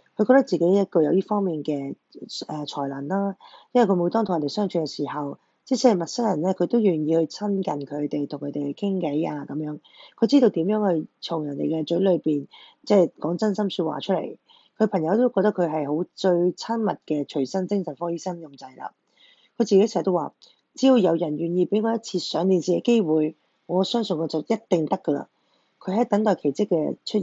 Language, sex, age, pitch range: Chinese, female, 20-39, 155-200 Hz